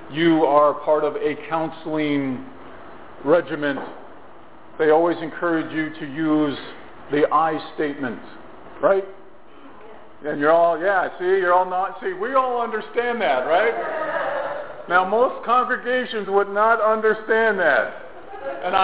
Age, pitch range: 50-69, 155-195 Hz